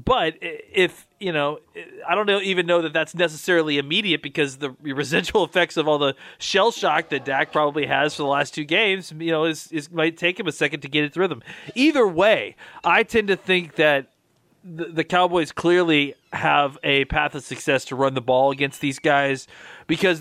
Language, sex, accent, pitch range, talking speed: English, male, American, 135-170 Hz, 200 wpm